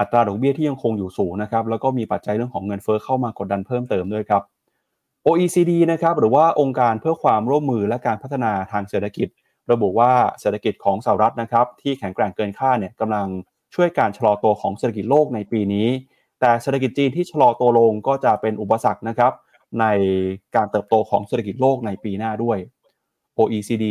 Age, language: 20-39, Thai